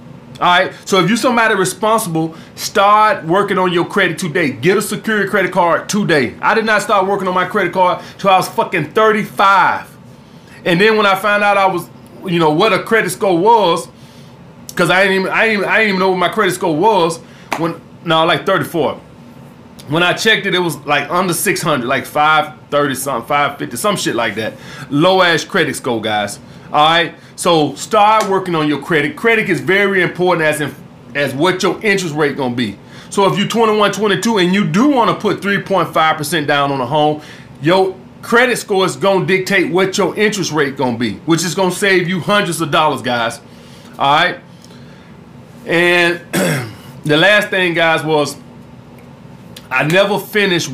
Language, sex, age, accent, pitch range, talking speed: English, male, 30-49, American, 150-200 Hz, 185 wpm